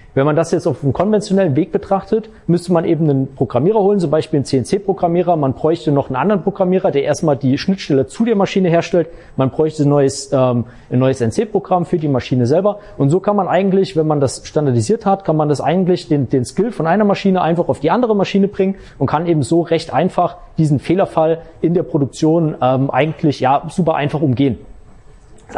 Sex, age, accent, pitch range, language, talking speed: male, 30-49, German, 140-190 Hz, German, 205 wpm